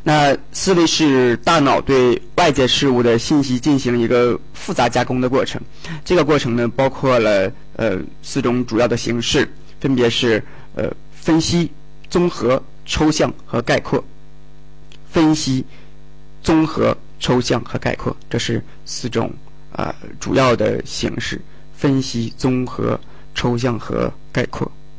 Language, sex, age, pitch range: Chinese, male, 20-39, 120-155 Hz